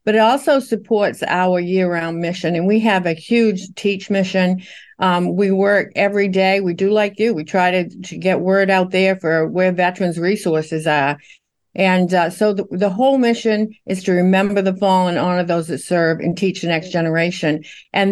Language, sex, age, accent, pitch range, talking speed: English, female, 60-79, American, 160-195 Hz, 190 wpm